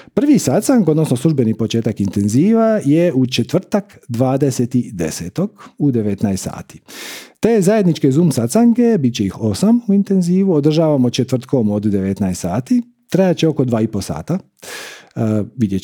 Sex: male